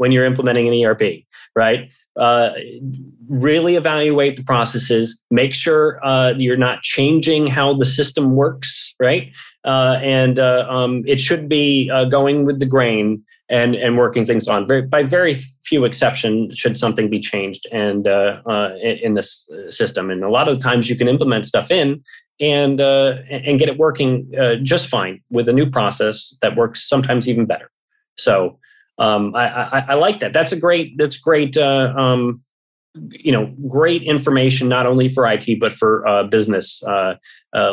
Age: 30-49